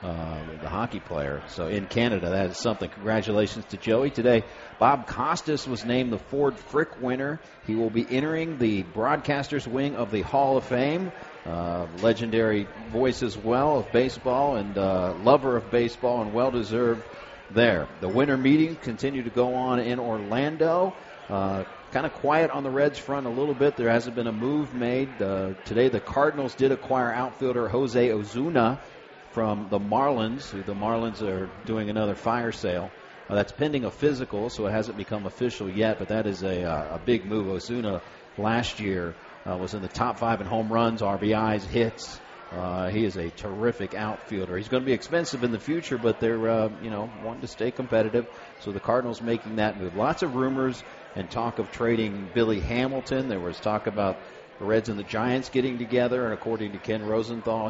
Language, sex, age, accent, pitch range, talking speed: English, male, 40-59, American, 105-130 Hz, 185 wpm